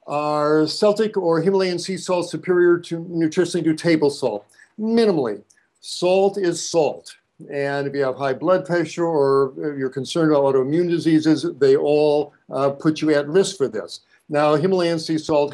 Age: 60-79